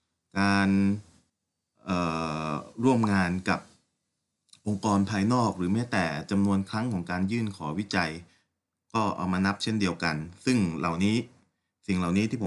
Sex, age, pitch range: male, 30-49, 90-110 Hz